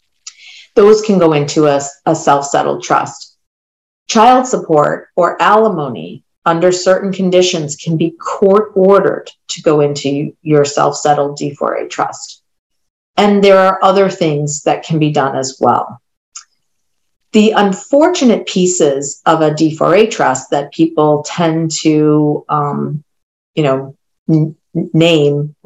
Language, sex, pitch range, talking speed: English, female, 145-190 Hz, 115 wpm